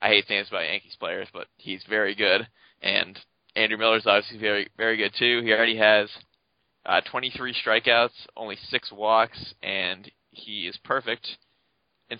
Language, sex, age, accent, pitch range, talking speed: English, male, 20-39, American, 100-115 Hz, 160 wpm